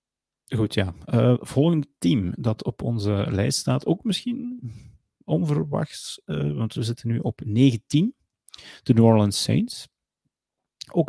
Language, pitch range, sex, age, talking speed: Dutch, 100-130 Hz, male, 30-49, 135 wpm